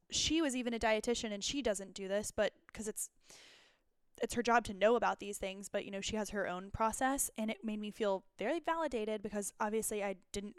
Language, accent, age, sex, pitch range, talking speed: English, American, 10-29, female, 200-240 Hz, 225 wpm